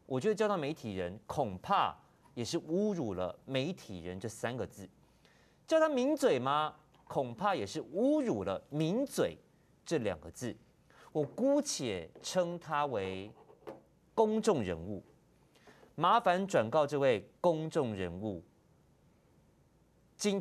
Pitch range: 120-185 Hz